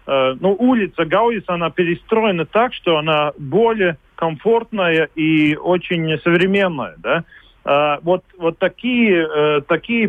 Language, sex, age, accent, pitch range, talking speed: Russian, male, 40-59, native, 145-185 Hz, 115 wpm